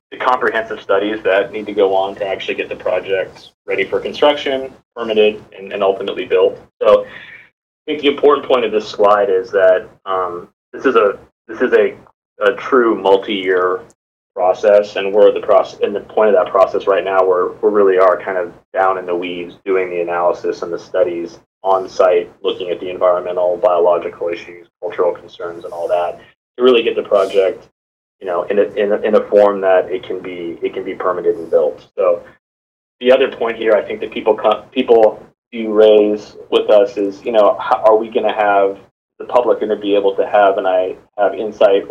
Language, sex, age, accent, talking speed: English, male, 30-49, American, 205 wpm